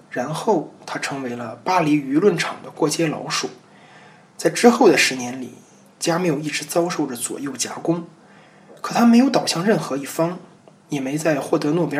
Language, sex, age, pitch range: Chinese, male, 20-39, 155-205 Hz